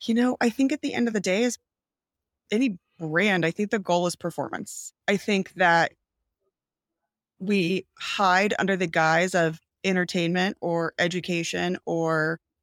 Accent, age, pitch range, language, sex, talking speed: American, 30-49, 165-200 Hz, English, female, 150 wpm